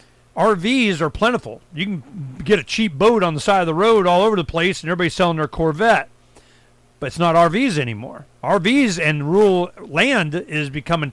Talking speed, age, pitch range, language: 190 wpm, 50-69, 145-190 Hz, English